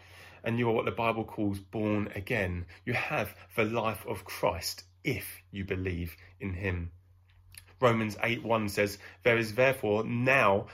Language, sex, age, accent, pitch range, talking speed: English, male, 30-49, British, 100-135 Hz, 155 wpm